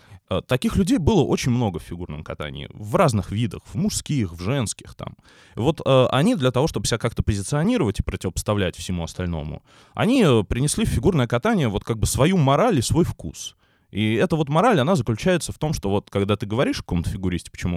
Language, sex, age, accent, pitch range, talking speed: Russian, male, 20-39, native, 95-130 Hz, 200 wpm